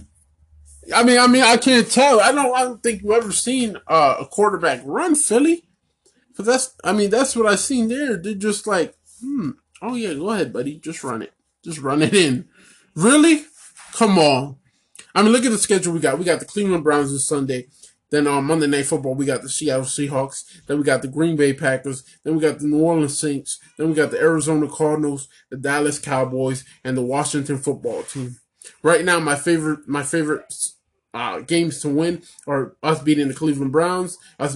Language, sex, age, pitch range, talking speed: English, male, 20-39, 140-200 Hz, 205 wpm